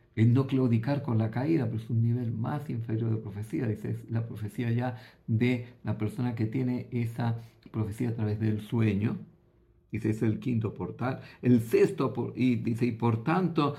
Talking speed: 185 wpm